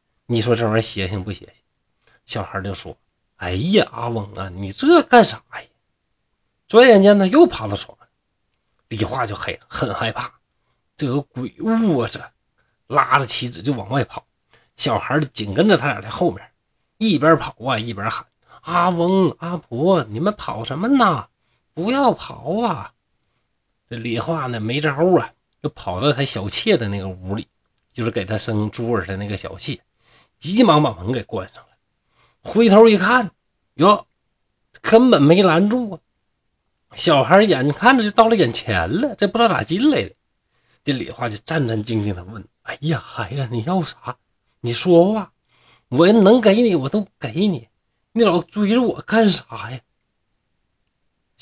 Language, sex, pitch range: Chinese, male, 110-180 Hz